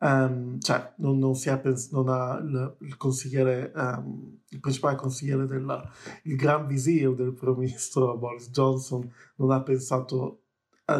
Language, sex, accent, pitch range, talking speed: Italian, male, native, 130-135 Hz, 155 wpm